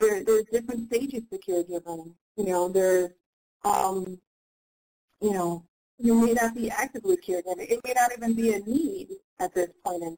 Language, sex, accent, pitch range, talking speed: English, female, American, 190-240 Hz, 170 wpm